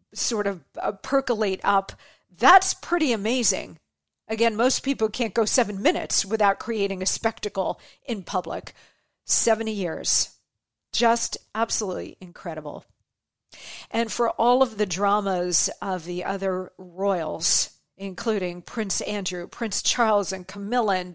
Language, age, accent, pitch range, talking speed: English, 50-69, American, 190-235 Hz, 125 wpm